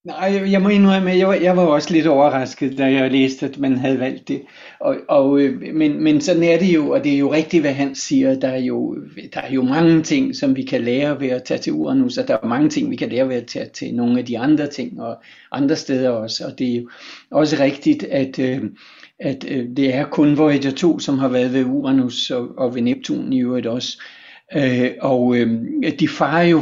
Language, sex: Danish, male